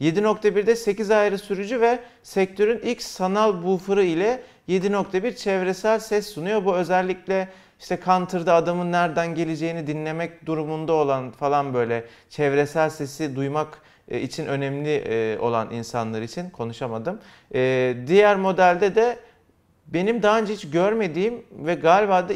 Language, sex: Turkish, male